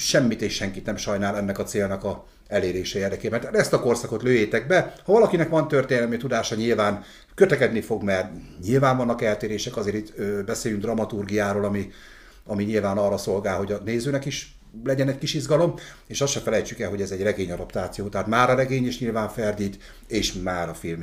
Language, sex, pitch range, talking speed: Hungarian, male, 100-130 Hz, 190 wpm